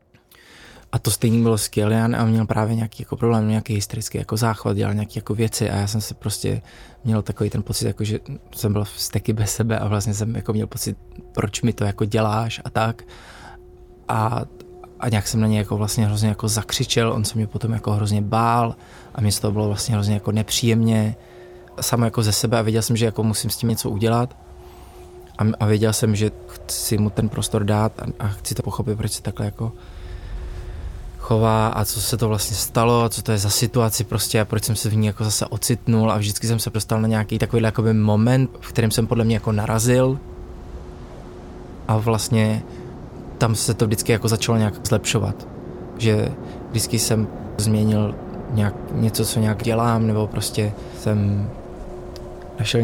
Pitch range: 105-115 Hz